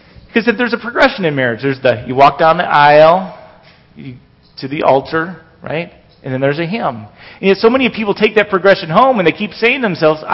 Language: English